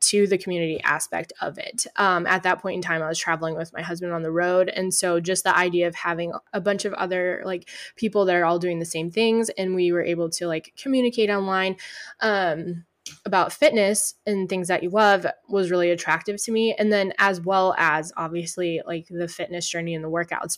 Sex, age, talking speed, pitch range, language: female, 20-39, 220 wpm, 175-215 Hz, English